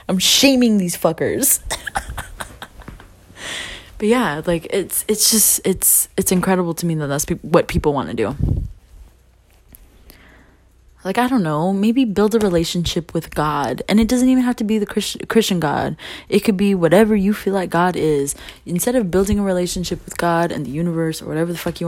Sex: female